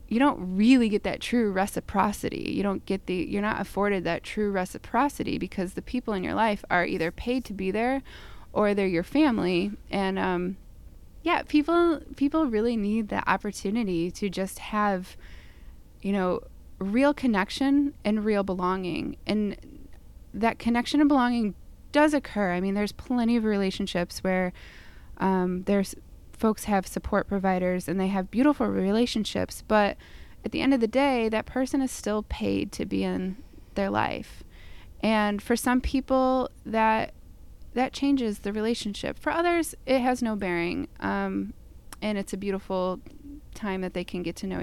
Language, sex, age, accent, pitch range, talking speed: English, female, 20-39, American, 185-240 Hz, 165 wpm